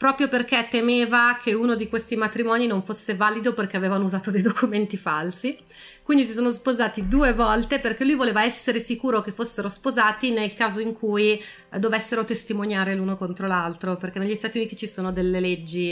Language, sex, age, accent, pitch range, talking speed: Italian, female, 30-49, native, 195-240 Hz, 180 wpm